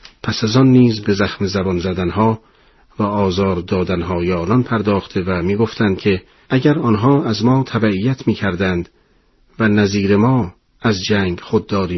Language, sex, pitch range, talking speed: Persian, male, 100-120 Hz, 145 wpm